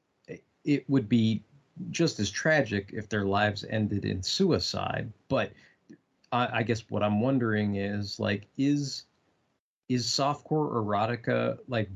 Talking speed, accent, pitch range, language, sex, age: 130 wpm, American, 105-135 Hz, English, male, 30-49